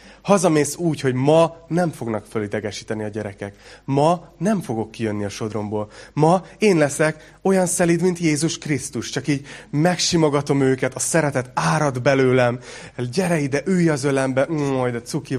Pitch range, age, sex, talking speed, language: 125-160 Hz, 30-49, male, 150 wpm, Hungarian